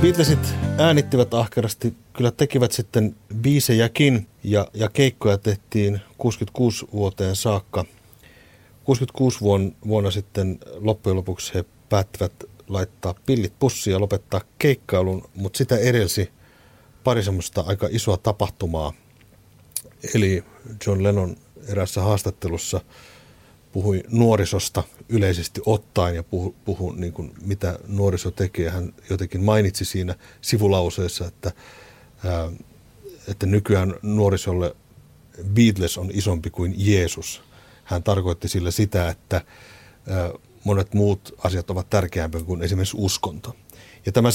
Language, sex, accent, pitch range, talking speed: Finnish, male, native, 95-115 Hz, 105 wpm